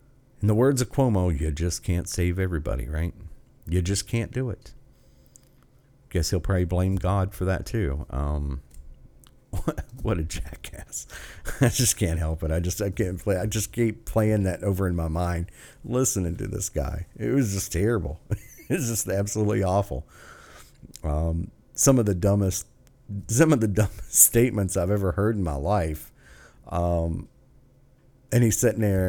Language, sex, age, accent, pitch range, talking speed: English, male, 50-69, American, 85-115 Hz, 165 wpm